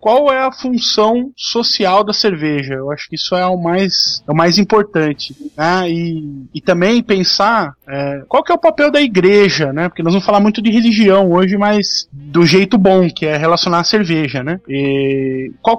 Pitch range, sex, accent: 150-195 Hz, male, Brazilian